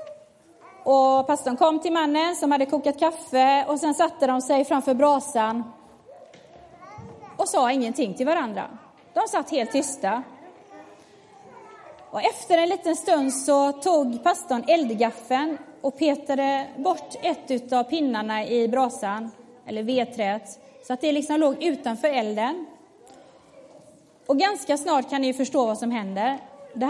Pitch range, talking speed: 245-320 Hz, 135 wpm